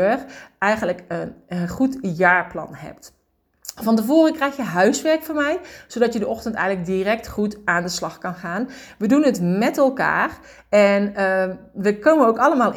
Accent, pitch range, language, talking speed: Dutch, 180-235 Hz, Dutch, 170 wpm